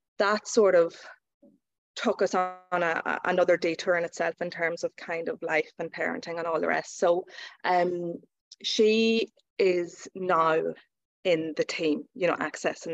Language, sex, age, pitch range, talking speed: English, female, 20-39, 170-200 Hz, 160 wpm